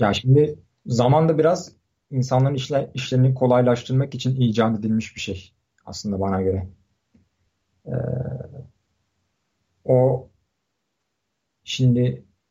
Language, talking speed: Turkish, 90 wpm